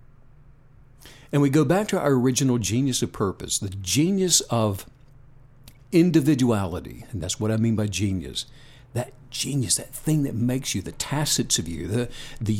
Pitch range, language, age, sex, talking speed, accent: 115-145 Hz, English, 60-79, male, 160 wpm, American